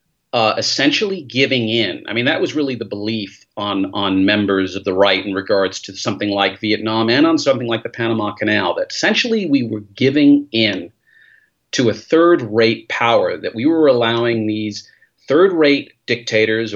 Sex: male